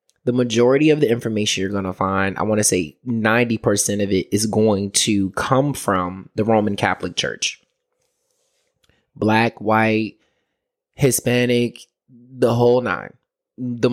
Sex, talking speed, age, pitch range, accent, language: male, 140 wpm, 20-39, 110-145 Hz, American, English